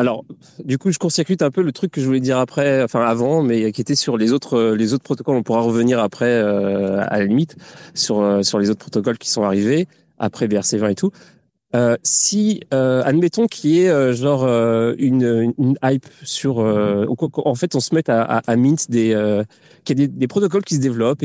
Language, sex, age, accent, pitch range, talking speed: French, male, 30-49, French, 115-155 Hz, 225 wpm